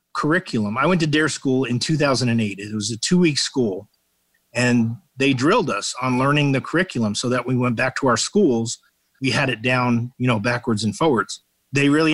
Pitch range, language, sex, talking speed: 120-145 Hz, English, male, 200 wpm